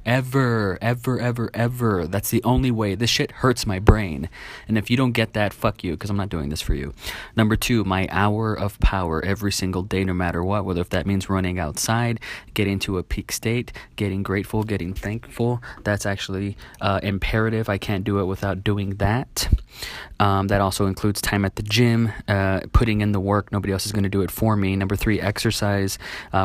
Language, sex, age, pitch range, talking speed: English, male, 20-39, 95-110 Hz, 210 wpm